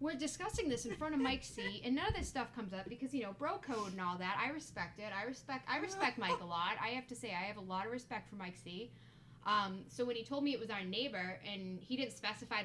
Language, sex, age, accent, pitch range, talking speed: English, female, 10-29, American, 195-275 Hz, 285 wpm